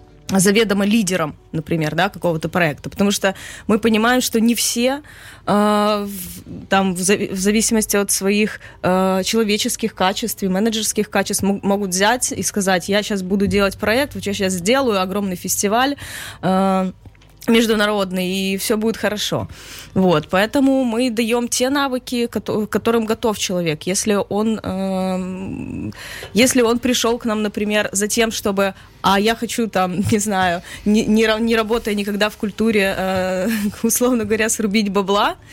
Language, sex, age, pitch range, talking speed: Ukrainian, female, 20-39, 190-225 Hz, 150 wpm